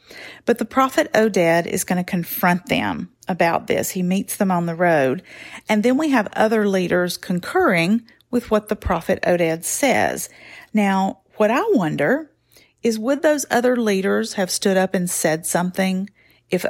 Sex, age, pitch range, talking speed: female, 40-59, 180-225 Hz, 165 wpm